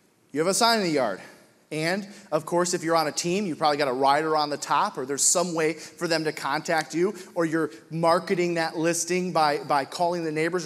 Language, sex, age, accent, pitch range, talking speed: English, male, 30-49, American, 150-180 Hz, 235 wpm